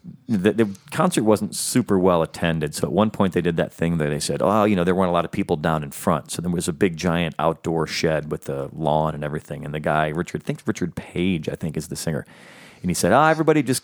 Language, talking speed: English, 275 wpm